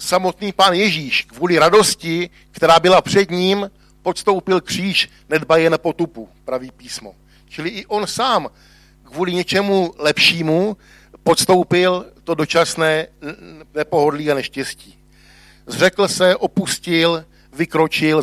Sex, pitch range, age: male, 130-170 Hz, 60-79